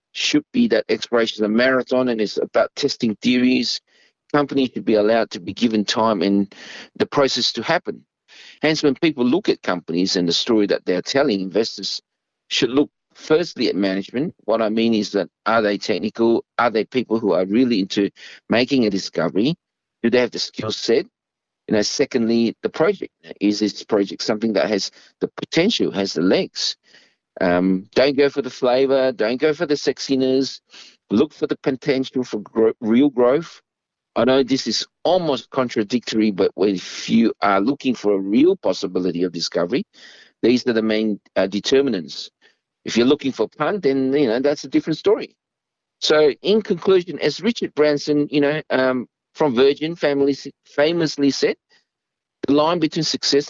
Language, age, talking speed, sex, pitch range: English, 50-69, 175 wpm, male, 110-145 Hz